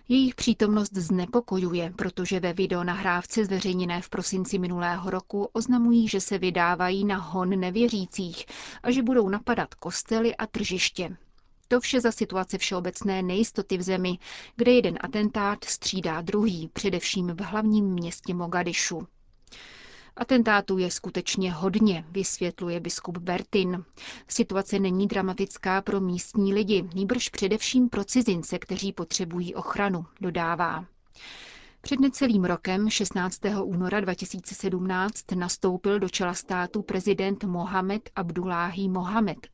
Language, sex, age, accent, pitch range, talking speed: Czech, female, 30-49, native, 180-210 Hz, 120 wpm